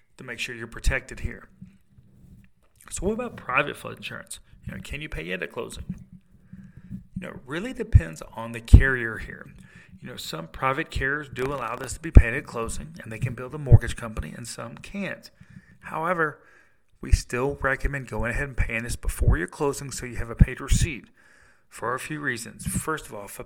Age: 40-59